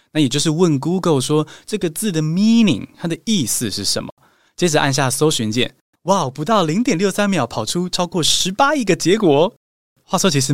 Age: 20-39